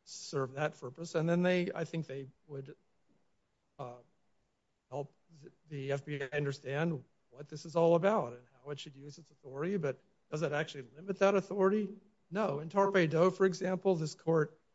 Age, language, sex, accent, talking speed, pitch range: 50-69, English, male, American, 165 wpm, 140-175 Hz